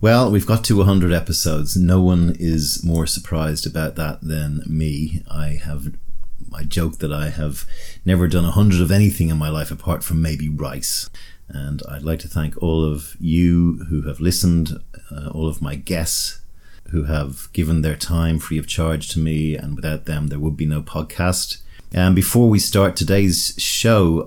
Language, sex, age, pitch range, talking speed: English, male, 40-59, 75-90 Hz, 185 wpm